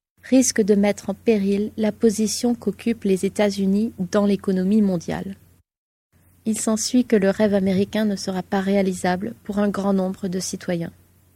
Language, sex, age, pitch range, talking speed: French, female, 20-39, 195-225 Hz, 155 wpm